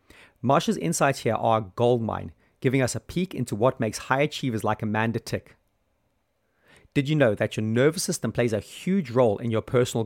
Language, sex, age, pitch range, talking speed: English, male, 30-49, 110-140 Hz, 190 wpm